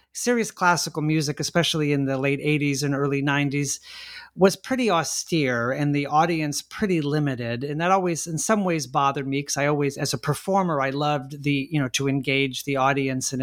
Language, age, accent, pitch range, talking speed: English, 40-59, American, 135-170 Hz, 190 wpm